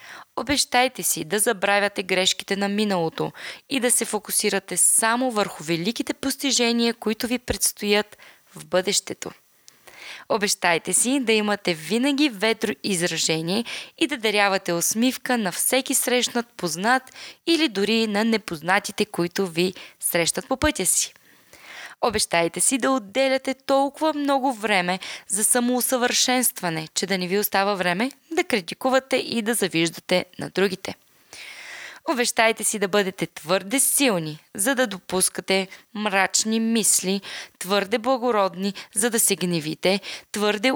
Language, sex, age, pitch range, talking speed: Bulgarian, female, 20-39, 185-250 Hz, 125 wpm